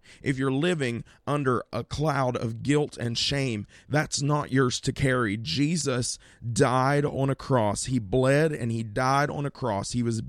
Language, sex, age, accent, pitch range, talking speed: English, male, 30-49, American, 115-140 Hz, 175 wpm